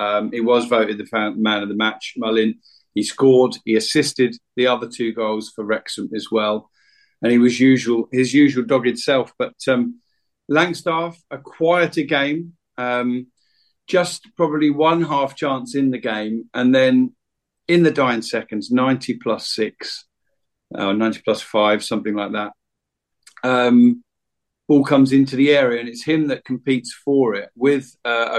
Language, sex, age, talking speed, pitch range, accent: English, male, 50-69, 165 wpm, 115-150 Hz, British